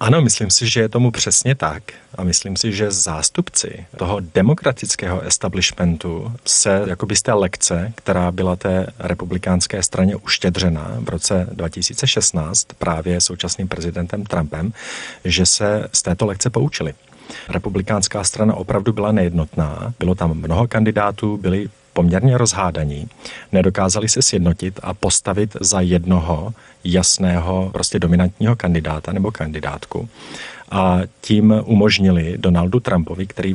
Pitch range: 90-105 Hz